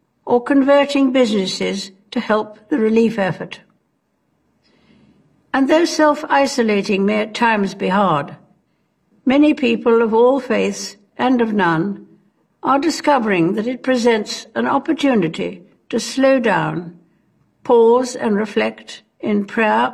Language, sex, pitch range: Chinese, female, 195-260 Hz